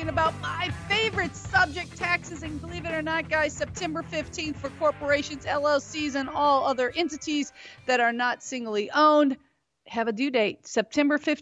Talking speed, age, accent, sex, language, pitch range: 160 wpm, 40-59, American, female, English, 225-295 Hz